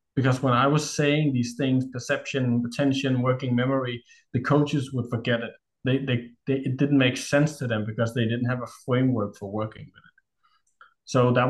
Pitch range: 115-135 Hz